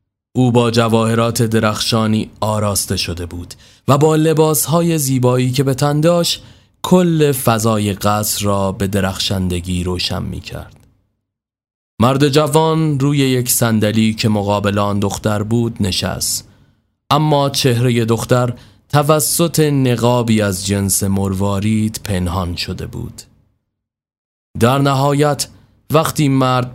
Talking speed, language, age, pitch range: 110 wpm, Persian, 30-49, 100-130 Hz